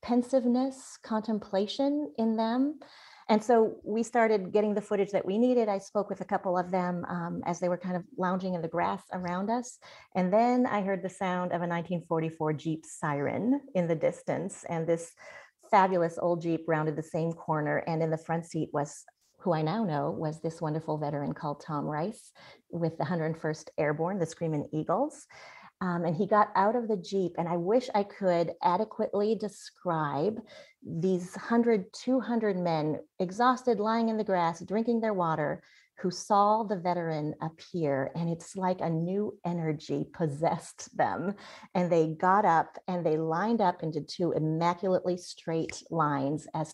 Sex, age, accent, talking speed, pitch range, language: female, 30-49, American, 170 wpm, 165-210 Hz, English